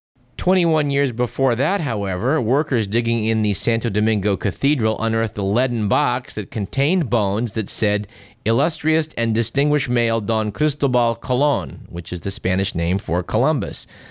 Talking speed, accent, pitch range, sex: 150 wpm, American, 105-130 Hz, male